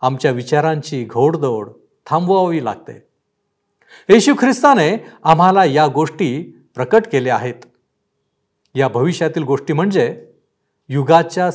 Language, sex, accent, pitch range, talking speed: Marathi, male, native, 130-180 Hz, 95 wpm